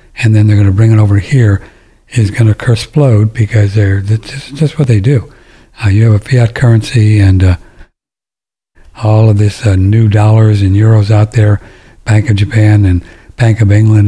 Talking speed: 190 wpm